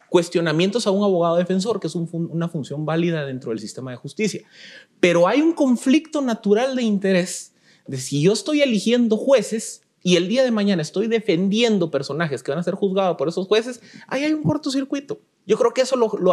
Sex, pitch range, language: male, 160-225 Hz, Spanish